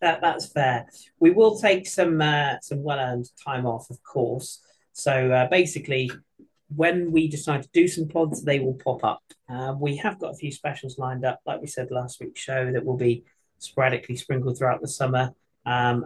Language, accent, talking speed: English, British, 190 wpm